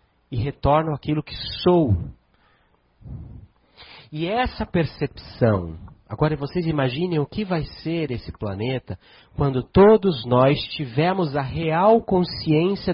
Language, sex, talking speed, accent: Portuguese, male, 110 wpm, Brazilian